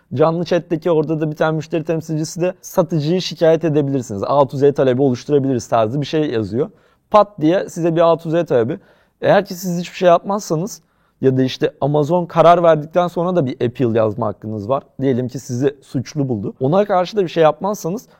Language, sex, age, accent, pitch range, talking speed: Turkish, male, 30-49, native, 140-175 Hz, 180 wpm